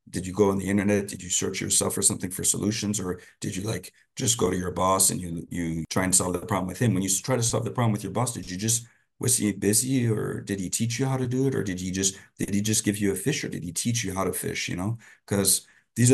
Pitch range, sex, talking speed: 85-105 Hz, male, 300 wpm